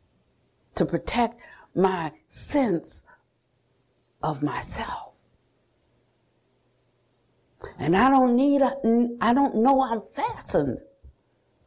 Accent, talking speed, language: American, 75 wpm, English